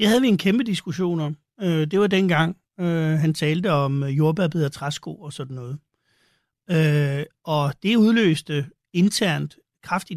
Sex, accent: male, native